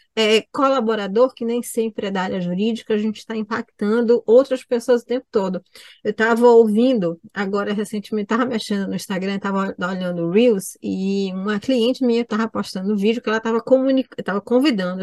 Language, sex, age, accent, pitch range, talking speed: Portuguese, female, 20-39, Brazilian, 210-265 Hz, 180 wpm